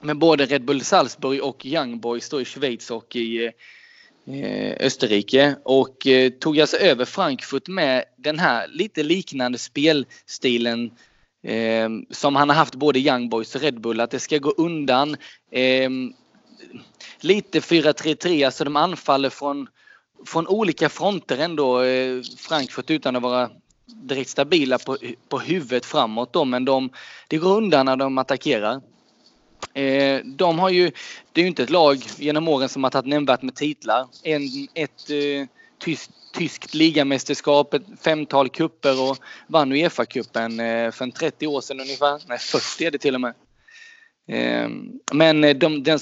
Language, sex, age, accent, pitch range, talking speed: Swedish, male, 20-39, native, 130-160 Hz, 150 wpm